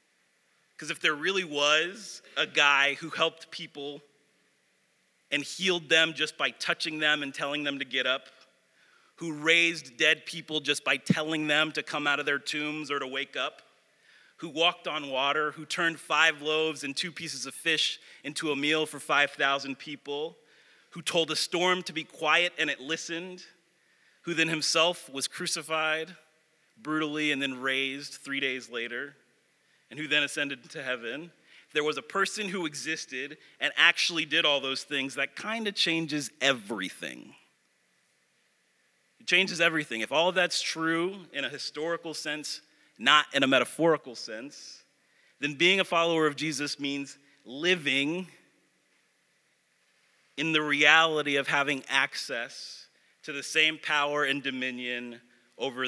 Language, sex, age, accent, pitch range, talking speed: English, male, 30-49, American, 140-165 Hz, 155 wpm